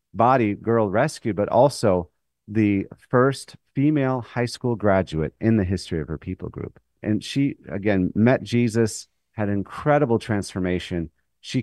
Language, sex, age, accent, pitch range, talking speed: English, male, 40-59, American, 90-120 Hz, 140 wpm